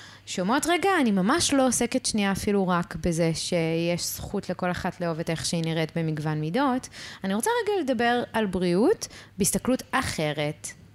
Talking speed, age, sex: 160 wpm, 20-39, female